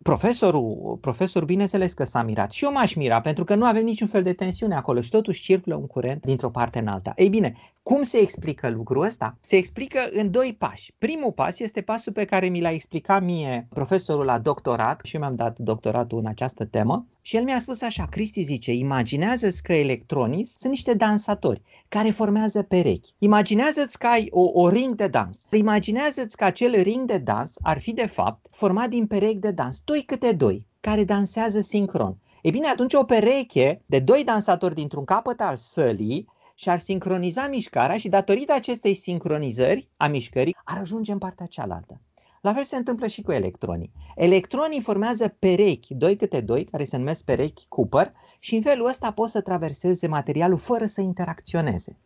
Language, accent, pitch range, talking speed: Romanian, native, 150-225 Hz, 185 wpm